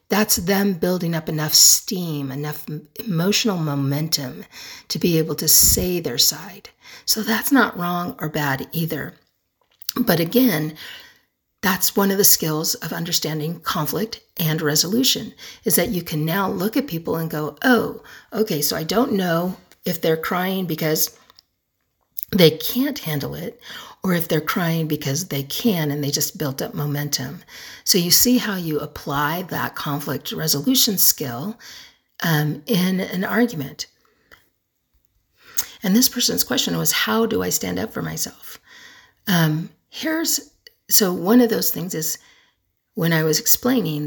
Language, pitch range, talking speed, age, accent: English, 155-225 Hz, 150 wpm, 50-69, American